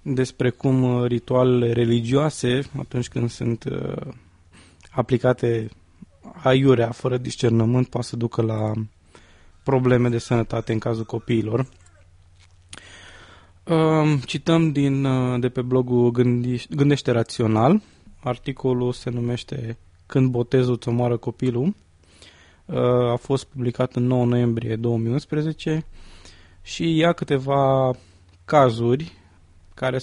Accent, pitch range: Romanian, 115-150 Hz